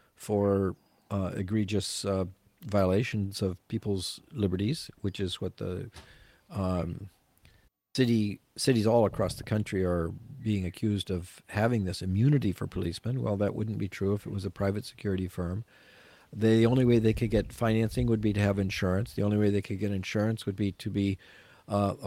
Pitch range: 95-115 Hz